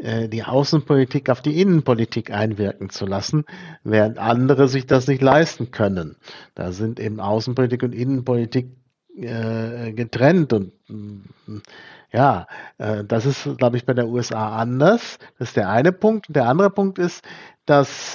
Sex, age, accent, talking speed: male, 50-69, German, 150 wpm